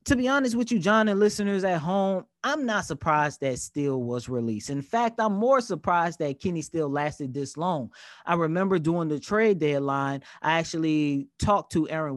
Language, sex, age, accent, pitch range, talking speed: English, male, 20-39, American, 145-210 Hz, 190 wpm